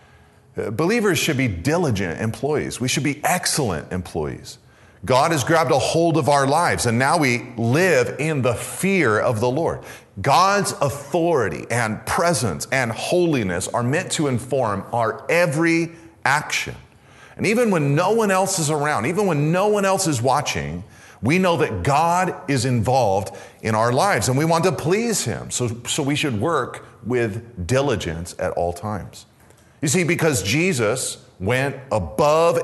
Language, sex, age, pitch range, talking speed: English, male, 40-59, 115-160 Hz, 160 wpm